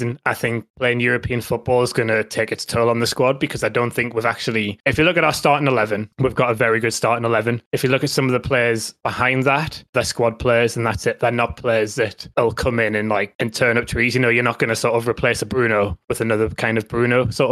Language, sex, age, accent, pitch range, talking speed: English, male, 20-39, British, 115-135 Hz, 275 wpm